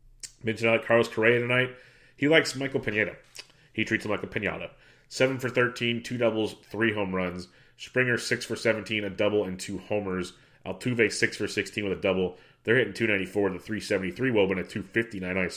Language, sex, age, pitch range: English, male, 30-49, 95-115 Hz